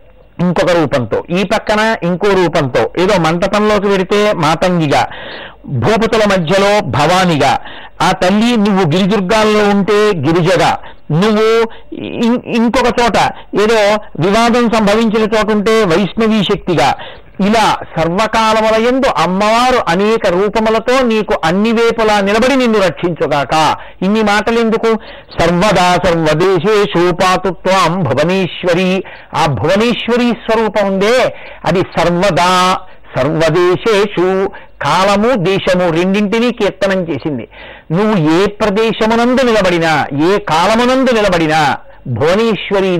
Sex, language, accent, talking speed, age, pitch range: male, Telugu, native, 90 wpm, 50-69, 175-215 Hz